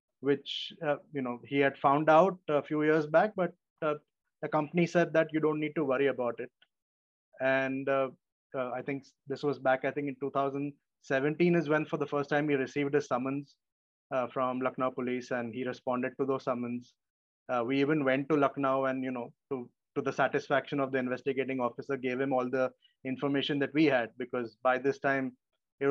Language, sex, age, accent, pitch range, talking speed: English, male, 20-39, Indian, 125-145 Hz, 200 wpm